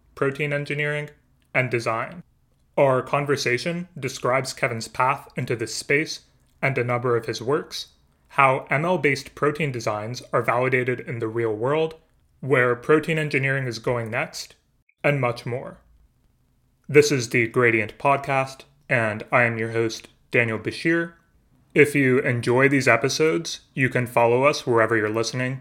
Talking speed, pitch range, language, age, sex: 145 wpm, 115-135 Hz, English, 30-49, male